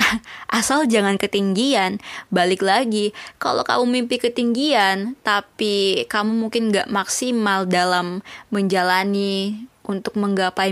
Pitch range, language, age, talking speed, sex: 190-235 Hz, Indonesian, 20-39, 100 wpm, female